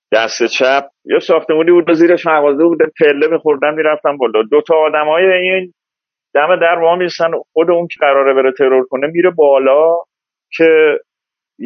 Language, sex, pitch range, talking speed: Persian, male, 145-180 Hz, 160 wpm